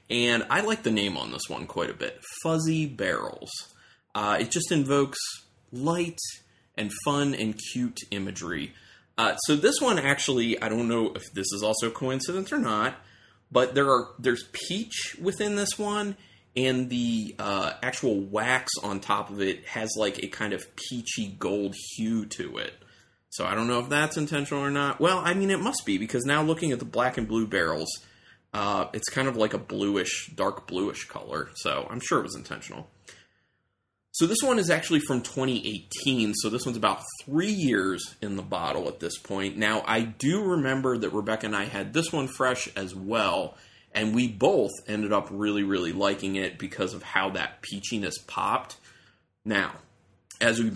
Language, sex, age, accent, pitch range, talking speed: English, male, 30-49, American, 100-145 Hz, 185 wpm